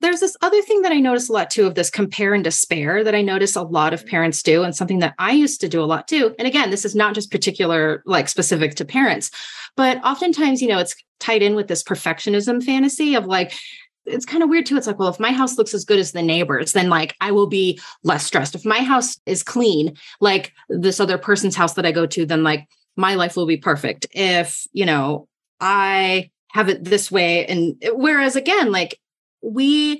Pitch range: 185-250 Hz